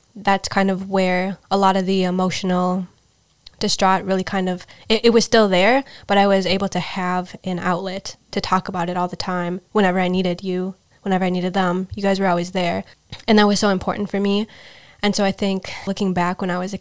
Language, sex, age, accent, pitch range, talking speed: English, female, 10-29, American, 180-195 Hz, 225 wpm